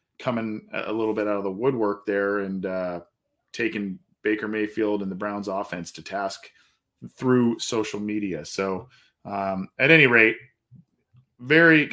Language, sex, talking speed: English, male, 145 wpm